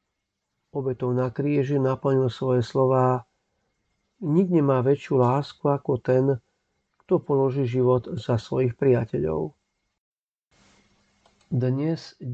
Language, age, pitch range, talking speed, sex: Slovak, 50-69, 115-135 Hz, 90 wpm, male